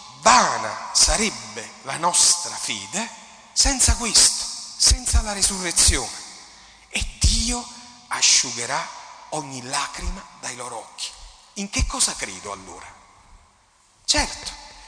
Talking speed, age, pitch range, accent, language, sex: 95 wpm, 40-59, 155-250 Hz, native, Italian, male